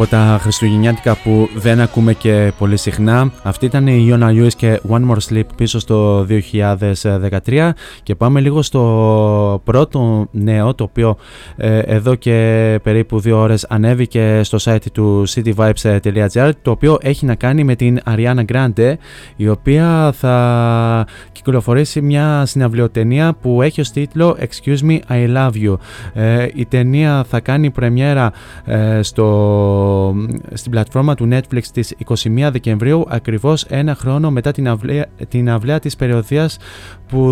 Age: 20-39